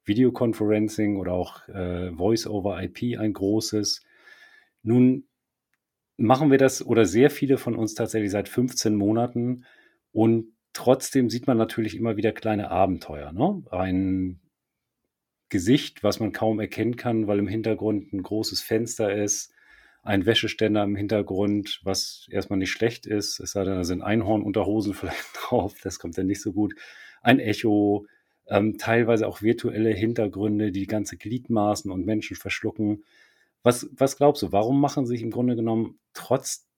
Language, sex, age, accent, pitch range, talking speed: German, male, 40-59, German, 95-115 Hz, 155 wpm